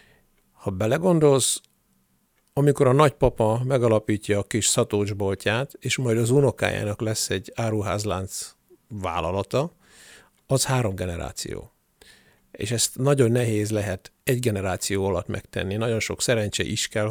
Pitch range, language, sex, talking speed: 100-120 Hz, Hungarian, male, 120 wpm